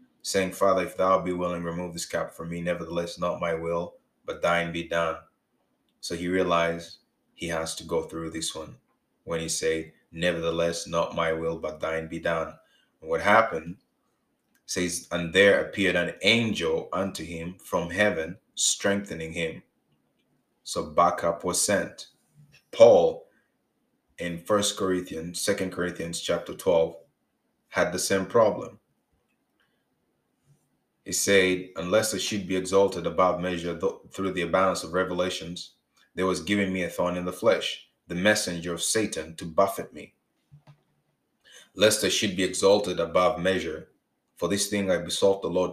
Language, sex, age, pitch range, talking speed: English, male, 20-39, 85-95 Hz, 150 wpm